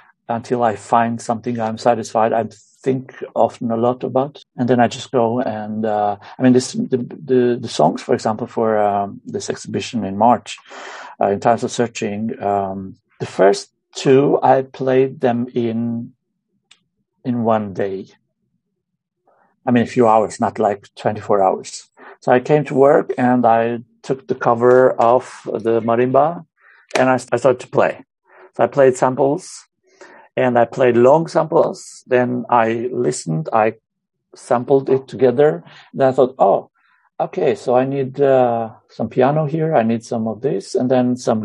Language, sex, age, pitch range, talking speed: English, male, 60-79, 115-130 Hz, 165 wpm